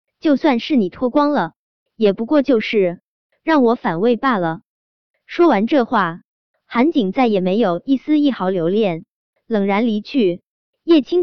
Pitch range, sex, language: 190-280 Hz, male, Chinese